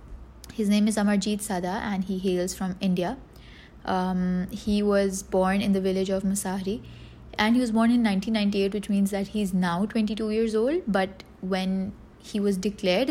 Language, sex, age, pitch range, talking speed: Urdu, female, 20-39, 185-215 Hz, 175 wpm